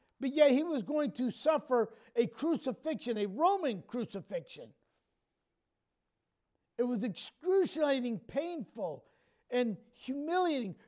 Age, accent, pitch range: 50-69, American, 225-305 Hz